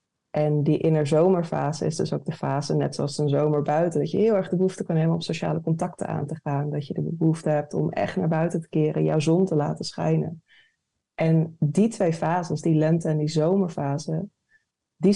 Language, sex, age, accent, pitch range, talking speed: Dutch, female, 20-39, Dutch, 155-170 Hz, 210 wpm